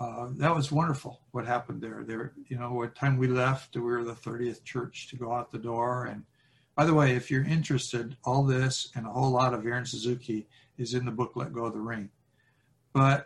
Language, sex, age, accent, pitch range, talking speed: English, male, 60-79, American, 125-140 Hz, 225 wpm